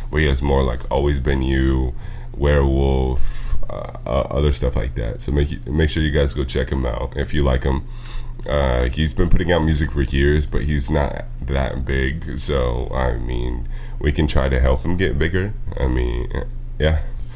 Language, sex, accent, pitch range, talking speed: English, male, American, 65-80 Hz, 195 wpm